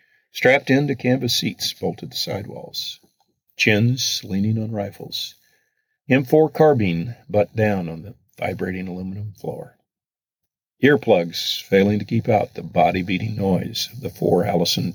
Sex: male